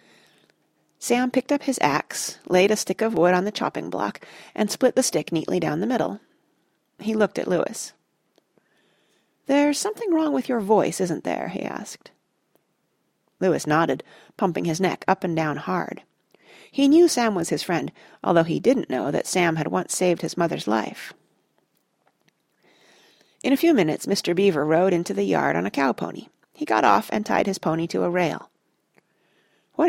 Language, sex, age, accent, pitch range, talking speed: English, female, 40-59, American, 170-255 Hz, 175 wpm